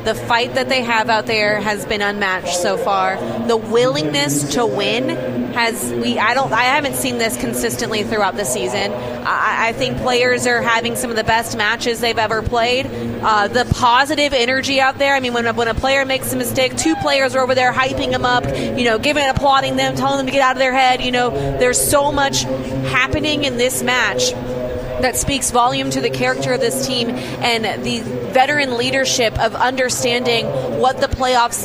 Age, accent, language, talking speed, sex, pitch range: 30-49, American, English, 200 wpm, female, 215-255 Hz